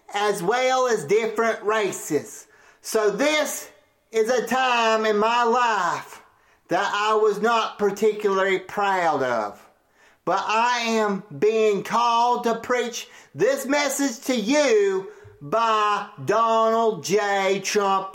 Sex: male